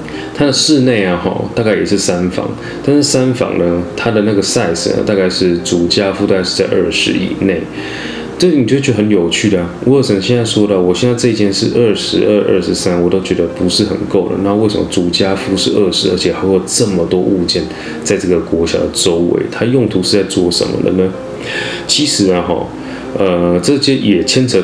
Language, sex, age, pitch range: Chinese, male, 20-39, 85-110 Hz